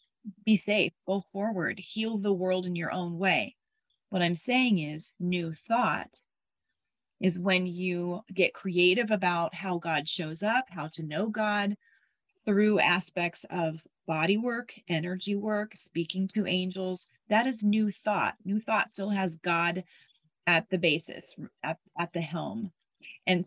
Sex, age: female, 30-49